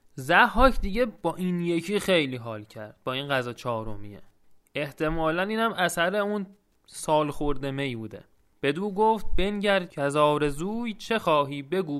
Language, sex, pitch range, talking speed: Persian, male, 150-215 Hz, 150 wpm